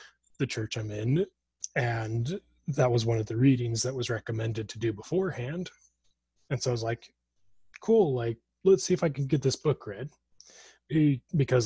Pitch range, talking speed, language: 115-155 Hz, 175 wpm, English